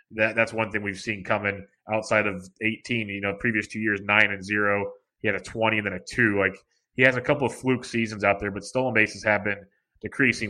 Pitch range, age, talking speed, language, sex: 105-120 Hz, 30-49, 240 wpm, English, male